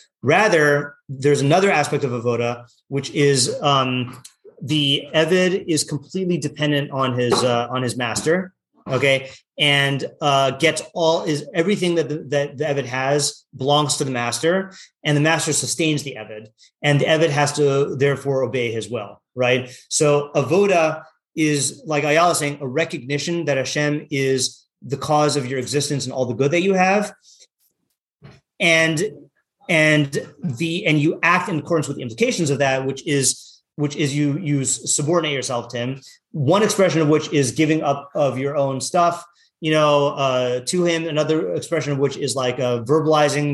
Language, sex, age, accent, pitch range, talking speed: English, male, 30-49, American, 135-160 Hz, 170 wpm